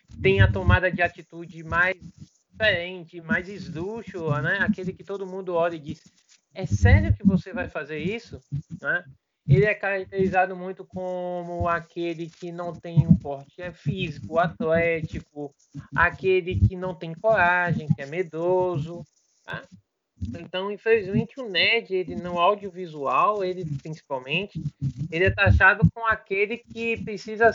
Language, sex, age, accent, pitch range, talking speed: Portuguese, male, 20-39, Brazilian, 155-195 Hz, 140 wpm